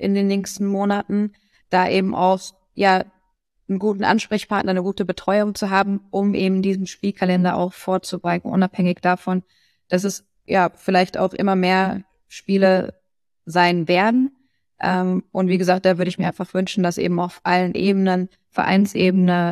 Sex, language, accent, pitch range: female, German, German, 180-190 Hz